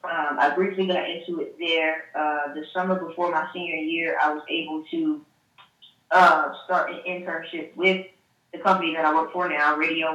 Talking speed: 185 wpm